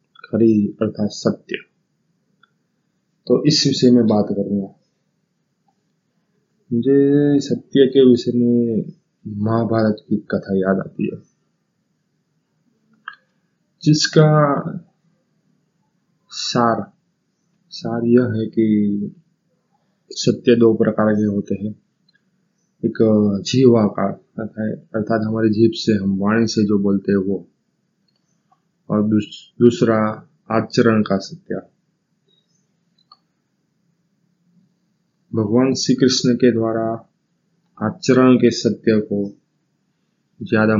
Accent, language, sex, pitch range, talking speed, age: native, Hindi, male, 110-180 Hz, 90 wpm, 20-39